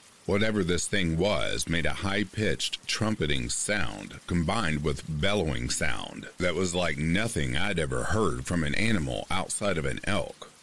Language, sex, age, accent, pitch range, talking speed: English, male, 50-69, American, 75-105 Hz, 150 wpm